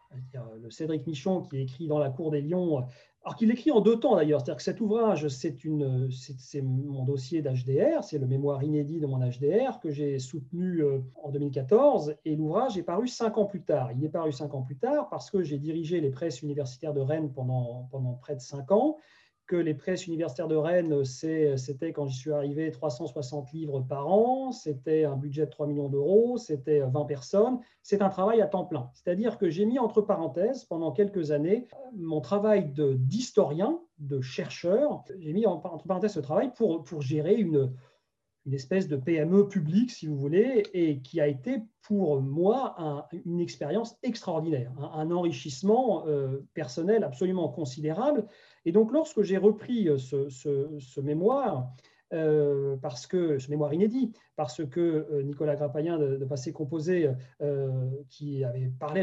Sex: male